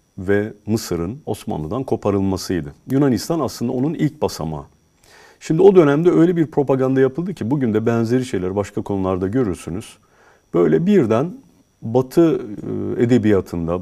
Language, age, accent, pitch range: Turkish, 50-69, native, 95-120 Hz